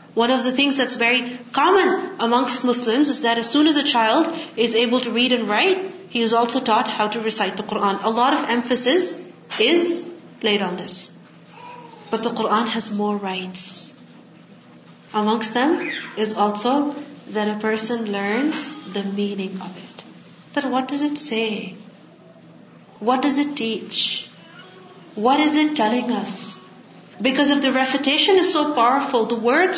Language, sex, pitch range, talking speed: Urdu, female, 225-305 Hz, 160 wpm